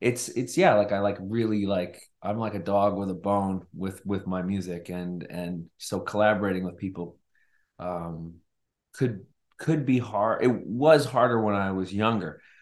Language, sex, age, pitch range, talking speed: English, male, 40-59, 90-115 Hz, 175 wpm